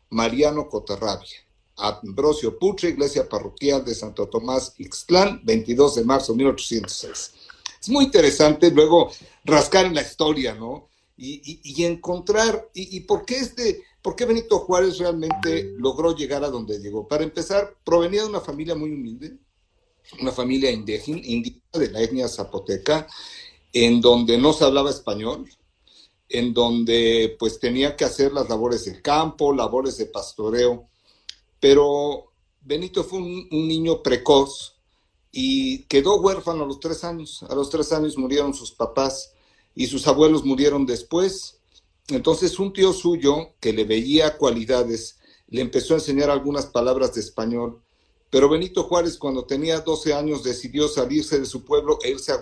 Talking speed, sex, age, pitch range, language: 155 wpm, male, 50-69, 130-180 Hz, Spanish